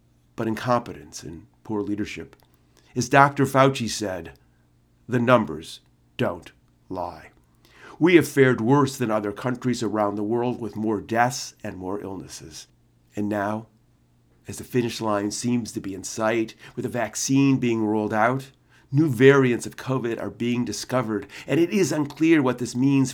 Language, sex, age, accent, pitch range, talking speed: English, male, 40-59, American, 105-135 Hz, 155 wpm